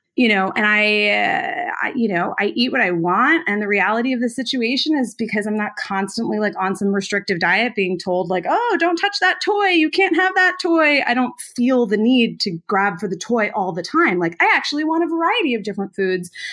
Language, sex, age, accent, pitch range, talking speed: English, female, 20-39, American, 195-315 Hz, 230 wpm